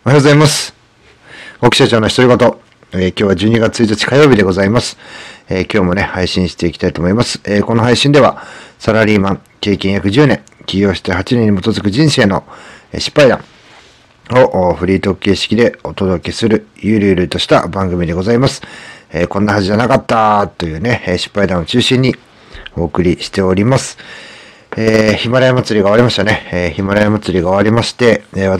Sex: male